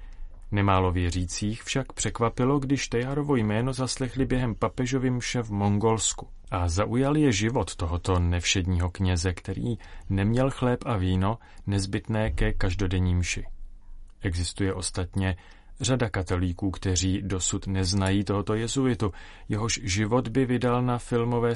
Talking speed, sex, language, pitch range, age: 120 wpm, male, Czech, 95-120 Hz, 30-49